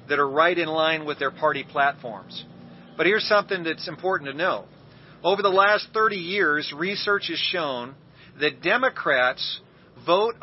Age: 40-59